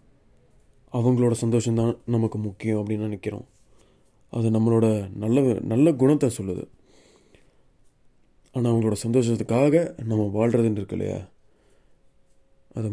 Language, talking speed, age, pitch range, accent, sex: Tamil, 95 wpm, 20-39, 110-130 Hz, native, male